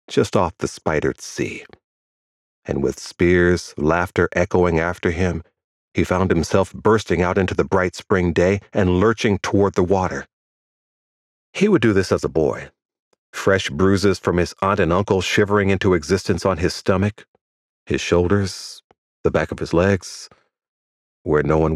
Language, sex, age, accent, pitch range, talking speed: English, male, 40-59, American, 80-100 Hz, 155 wpm